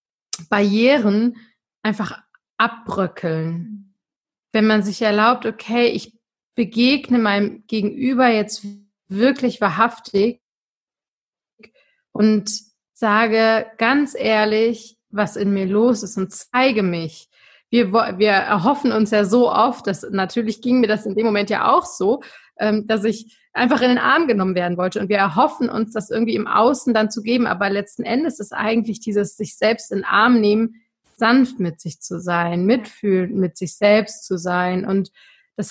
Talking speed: 155 wpm